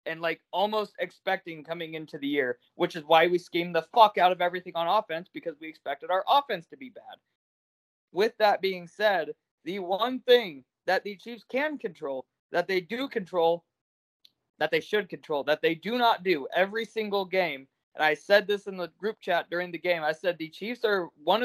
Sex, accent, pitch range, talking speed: male, American, 170-210 Hz, 205 wpm